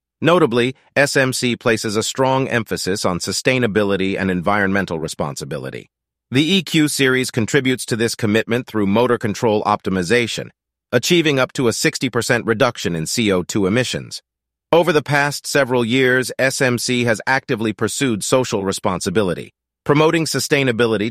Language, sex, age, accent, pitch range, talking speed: English, male, 40-59, American, 110-140 Hz, 125 wpm